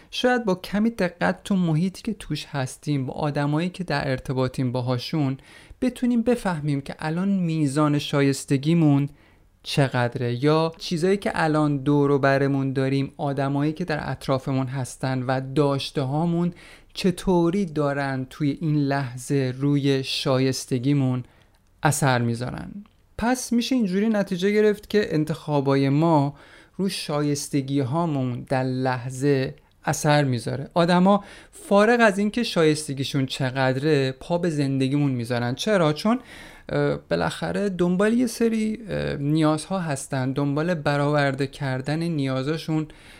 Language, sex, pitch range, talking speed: Persian, male, 135-180 Hz, 115 wpm